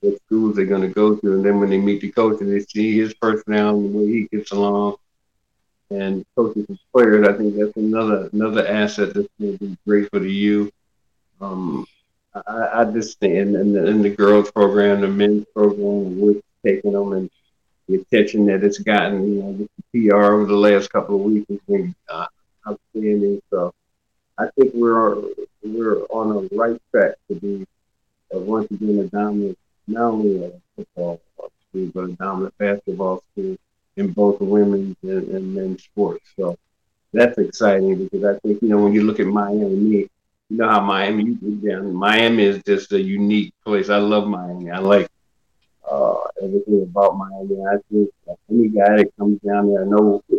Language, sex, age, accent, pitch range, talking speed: English, male, 50-69, American, 100-110 Hz, 185 wpm